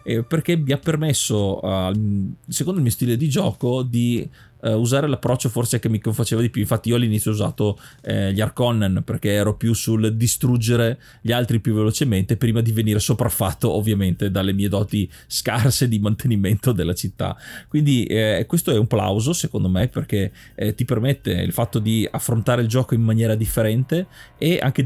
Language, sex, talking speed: Italian, male, 175 wpm